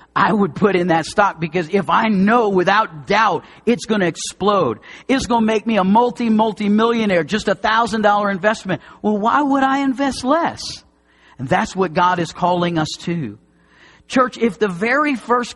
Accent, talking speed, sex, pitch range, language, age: American, 185 wpm, male, 160-225 Hz, English, 50-69